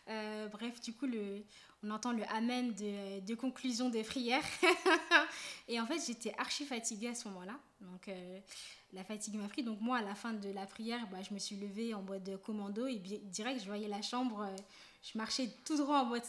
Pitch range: 215-275 Hz